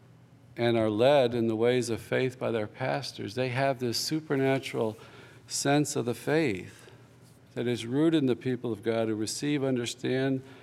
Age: 50-69